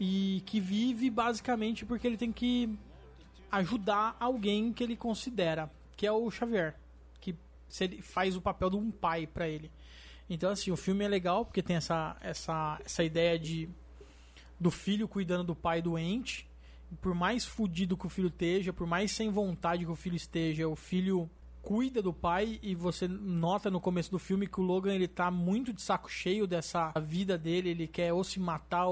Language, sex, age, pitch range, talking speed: Portuguese, male, 20-39, 175-215 Hz, 185 wpm